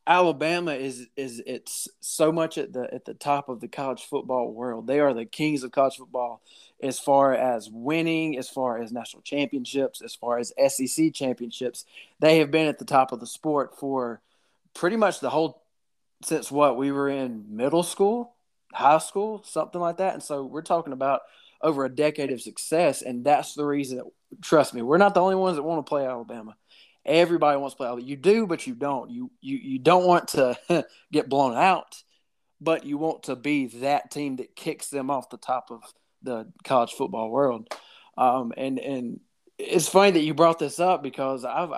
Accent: American